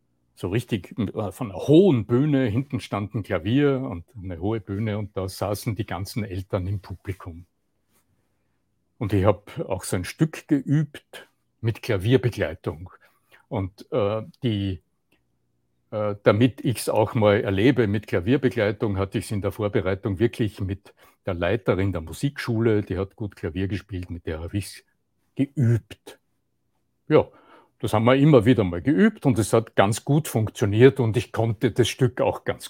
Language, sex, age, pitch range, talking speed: German, male, 60-79, 95-125 Hz, 160 wpm